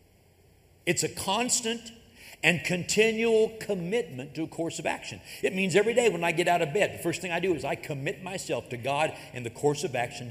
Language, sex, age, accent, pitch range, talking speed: English, male, 60-79, American, 125-205 Hz, 215 wpm